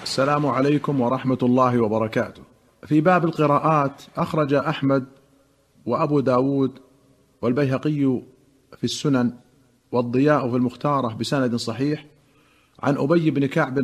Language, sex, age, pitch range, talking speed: Arabic, male, 50-69, 130-165 Hz, 105 wpm